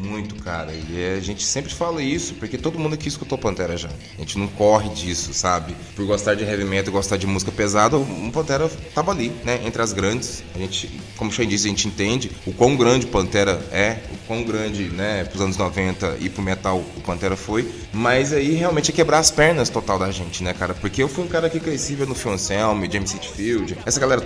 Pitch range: 100-135 Hz